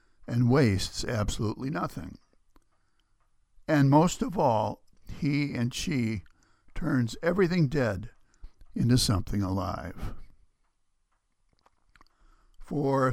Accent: American